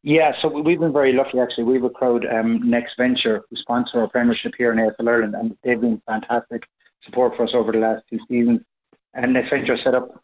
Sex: male